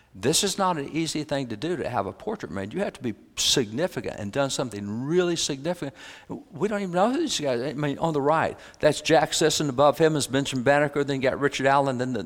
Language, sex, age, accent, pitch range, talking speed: English, male, 60-79, American, 125-150 Hz, 250 wpm